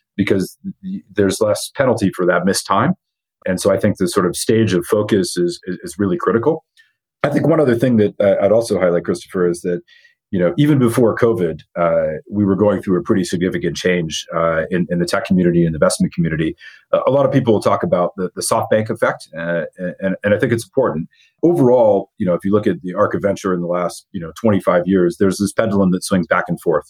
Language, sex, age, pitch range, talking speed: English, male, 40-59, 90-115 Hz, 235 wpm